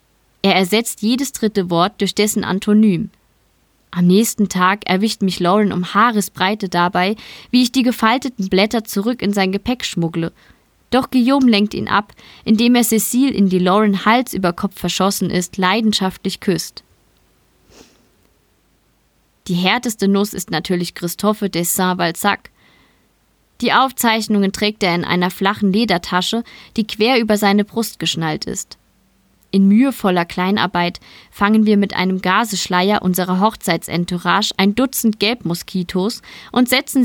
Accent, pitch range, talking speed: German, 185-225 Hz, 135 wpm